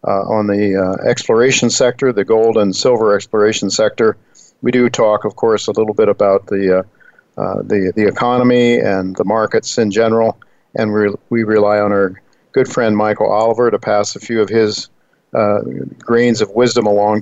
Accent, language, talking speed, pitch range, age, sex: American, English, 185 wpm, 100-115 Hz, 50-69, male